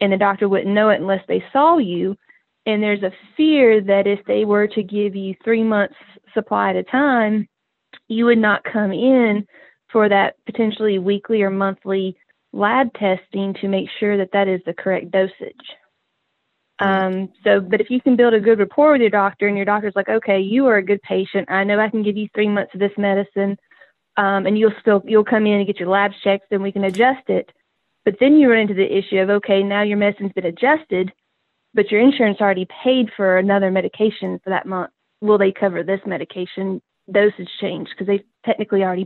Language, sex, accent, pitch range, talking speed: English, female, American, 190-215 Hz, 210 wpm